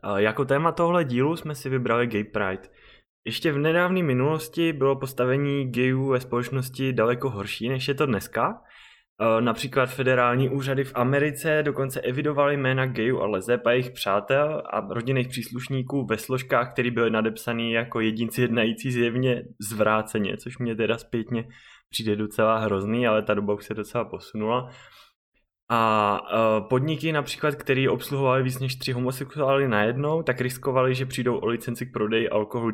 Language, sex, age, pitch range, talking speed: Czech, male, 20-39, 115-135 Hz, 155 wpm